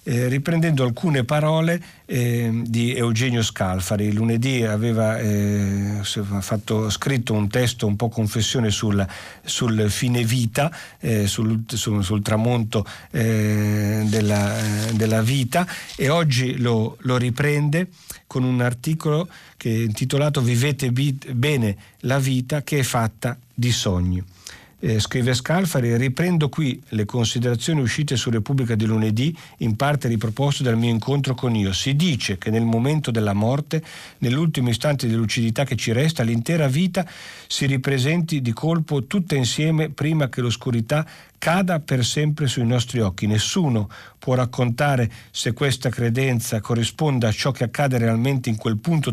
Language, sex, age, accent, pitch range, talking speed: Italian, male, 50-69, native, 110-140 Hz, 145 wpm